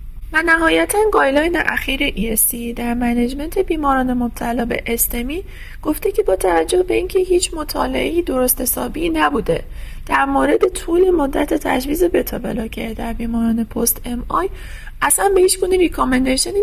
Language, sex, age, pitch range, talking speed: Persian, female, 30-49, 235-335 Hz, 135 wpm